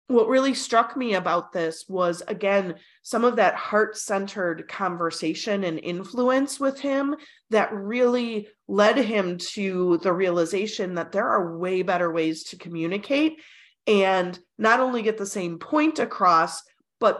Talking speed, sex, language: 145 wpm, female, English